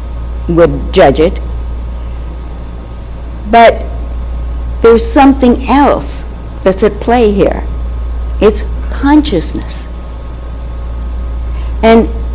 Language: English